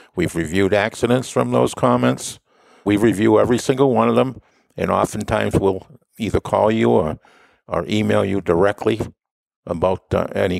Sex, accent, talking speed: male, American, 155 wpm